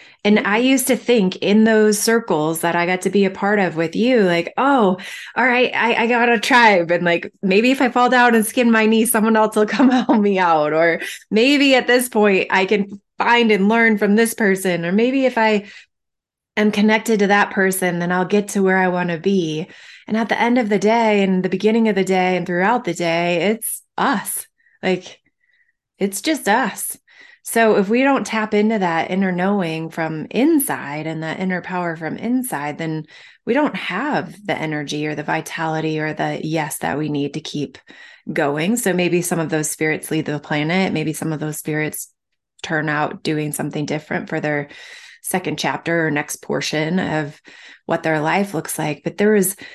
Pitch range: 160-220 Hz